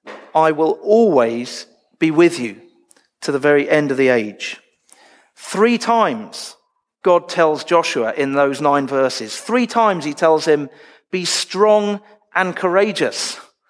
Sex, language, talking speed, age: male, English, 135 wpm, 40-59